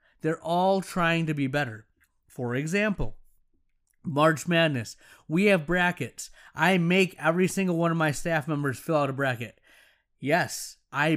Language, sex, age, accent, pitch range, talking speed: English, male, 30-49, American, 150-180 Hz, 150 wpm